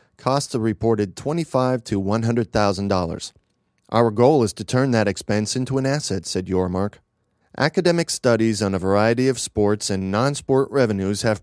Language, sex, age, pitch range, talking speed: English, male, 40-59, 105-135 Hz, 160 wpm